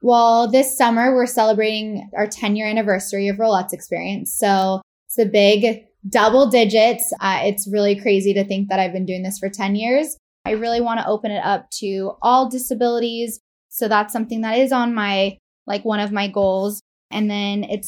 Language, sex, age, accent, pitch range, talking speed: English, female, 10-29, American, 195-225 Hz, 190 wpm